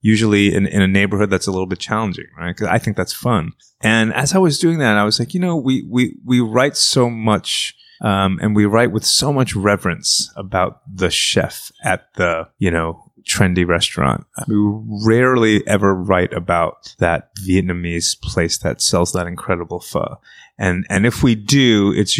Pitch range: 90-110 Hz